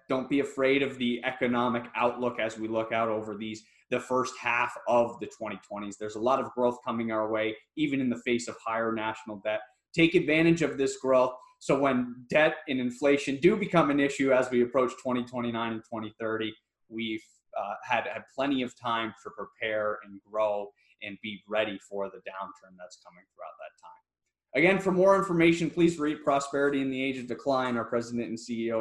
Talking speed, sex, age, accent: 190 wpm, male, 20-39, American